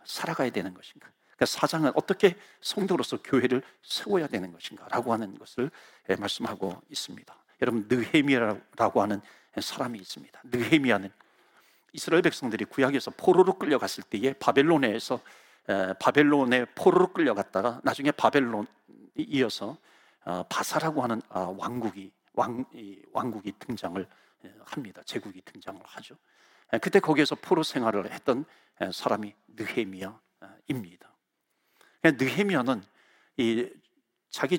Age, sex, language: 50-69, male, Korean